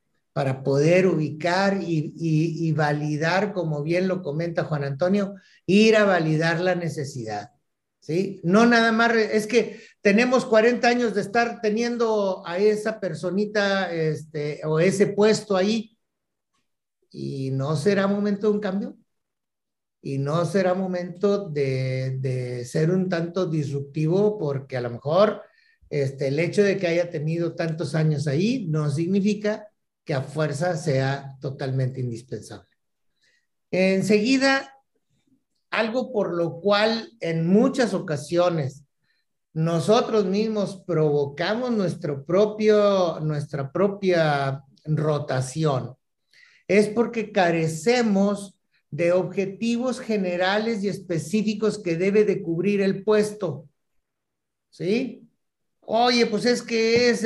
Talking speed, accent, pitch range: 120 wpm, Mexican, 155-210 Hz